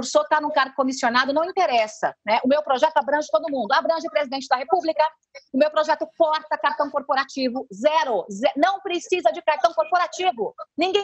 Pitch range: 260-335 Hz